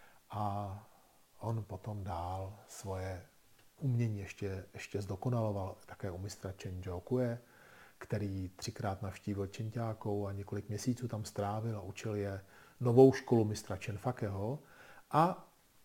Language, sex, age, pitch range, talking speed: Czech, male, 50-69, 95-120 Hz, 120 wpm